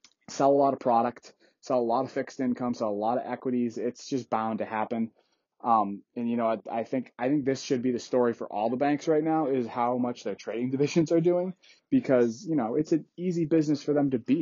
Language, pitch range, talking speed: English, 120-150 Hz, 250 wpm